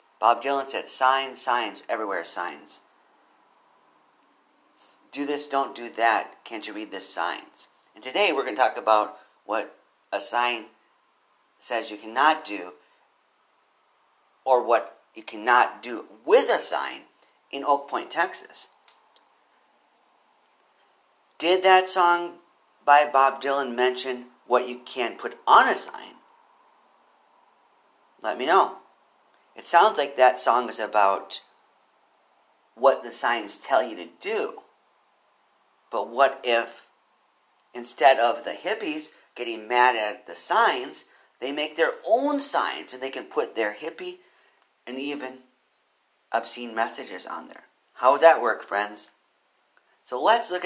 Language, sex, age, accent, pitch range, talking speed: English, male, 40-59, American, 115-155 Hz, 130 wpm